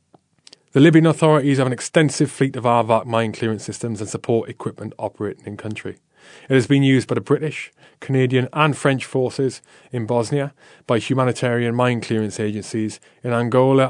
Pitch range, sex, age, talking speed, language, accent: 110-135 Hz, male, 20-39, 160 wpm, English, British